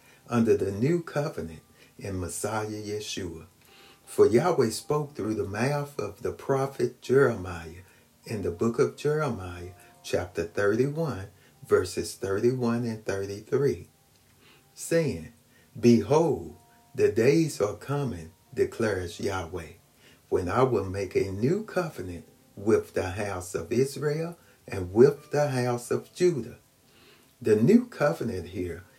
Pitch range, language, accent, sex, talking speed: 100-145 Hz, English, American, male, 120 wpm